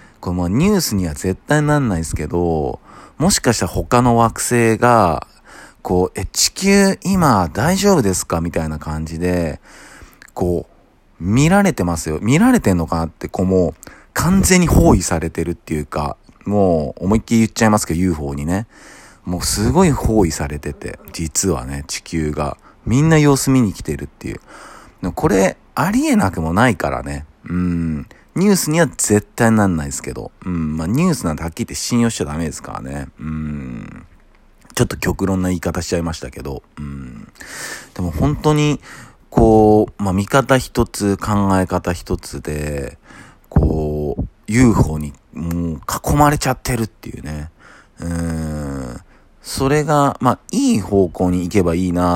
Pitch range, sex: 80-120 Hz, male